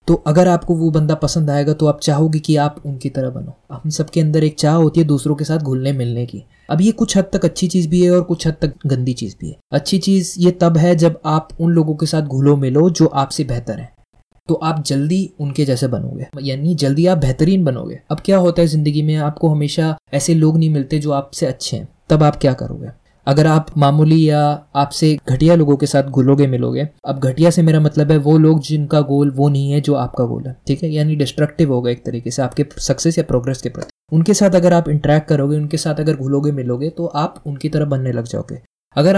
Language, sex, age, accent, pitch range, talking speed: Hindi, male, 20-39, native, 140-165 Hz, 235 wpm